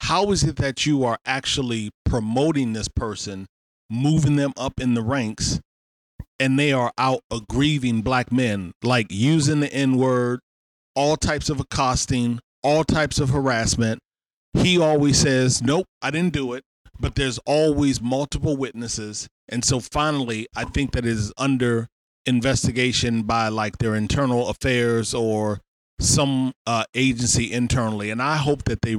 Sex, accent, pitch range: male, American, 115-135 Hz